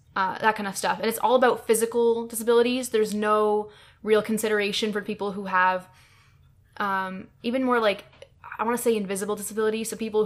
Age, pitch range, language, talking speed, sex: 10-29, 190-215 Hz, English, 180 wpm, female